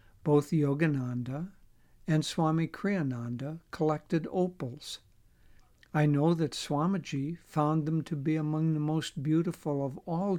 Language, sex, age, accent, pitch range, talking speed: English, male, 60-79, American, 135-165 Hz, 120 wpm